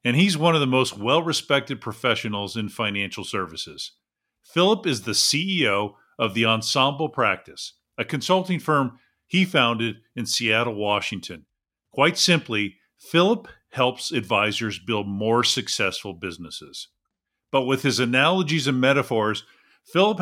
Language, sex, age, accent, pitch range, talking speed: English, male, 50-69, American, 115-160 Hz, 130 wpm